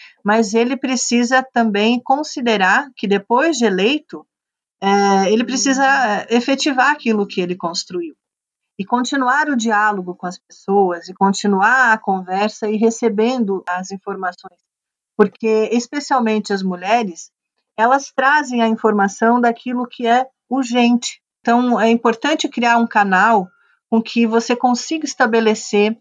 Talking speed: 125 wpm